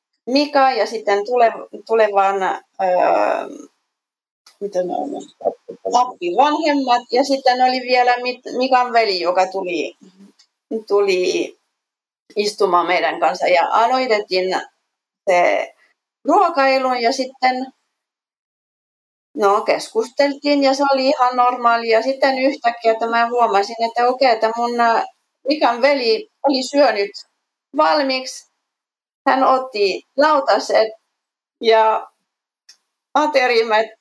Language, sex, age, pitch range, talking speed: Finnish, female, 30-49, 220-275 Hz, 90 wpm